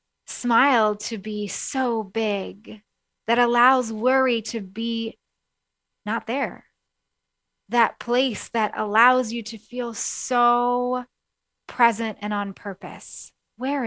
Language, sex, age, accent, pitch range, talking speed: English, female, 30-49, American, 195-250 Hz, 110 wpm